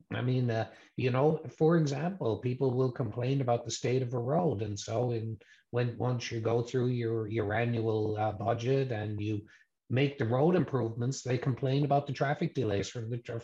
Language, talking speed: English, 190 wpm